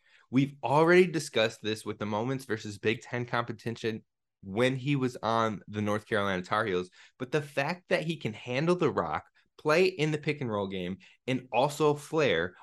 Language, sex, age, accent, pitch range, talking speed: English, male, 20-39, American, 120-155 Hz, 185 wpm